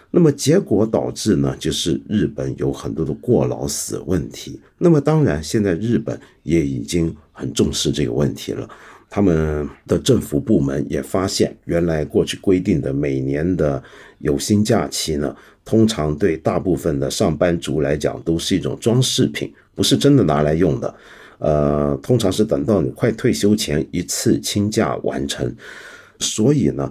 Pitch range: 70-100 Hz